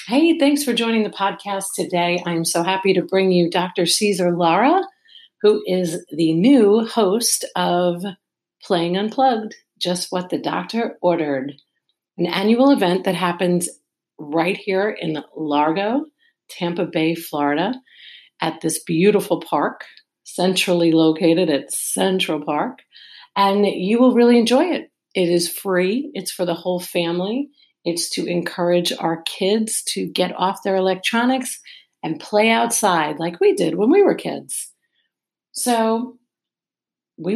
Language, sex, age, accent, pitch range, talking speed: English, female, 50-69, American, 175-225 Hz, 140 wpm